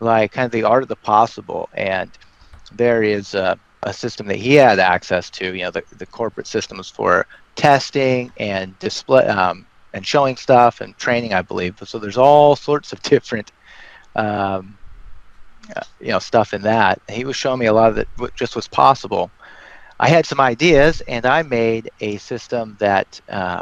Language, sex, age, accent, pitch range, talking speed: English, male, 30-49, American, 105-125 Hz, 185 wpm